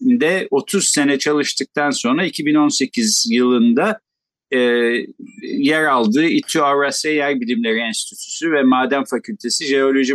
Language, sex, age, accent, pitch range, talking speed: Turkish, male, 50-69, native, 135-215 Hz, 105 wpm